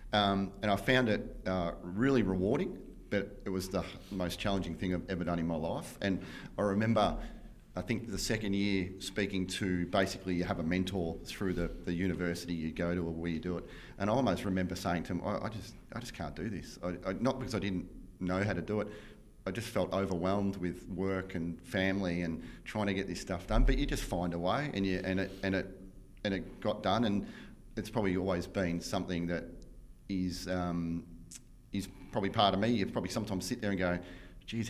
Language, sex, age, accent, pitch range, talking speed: English, male, 40-59, Australian, 90-105 Hz, 220 wpm